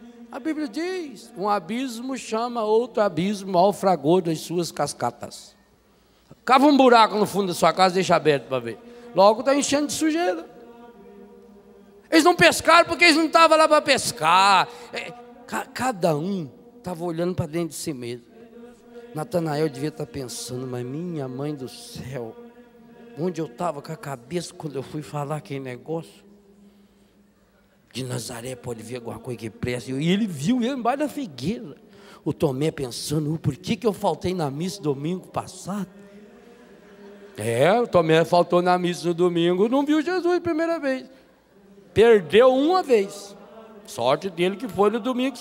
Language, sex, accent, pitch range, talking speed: Portuguese, male, Brazilian, 160-240 Hz, 160 wpm